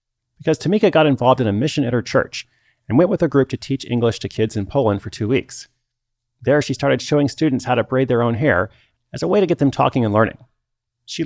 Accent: American